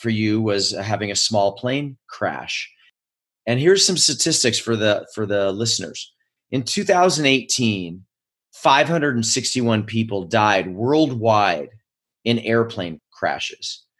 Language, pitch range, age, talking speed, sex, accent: English, 105-135 Hz, 30-49, 110 wpm, male, American